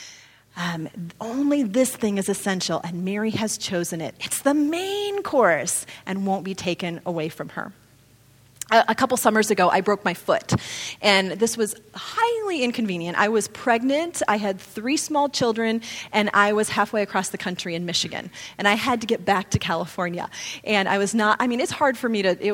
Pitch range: 185-235 Hz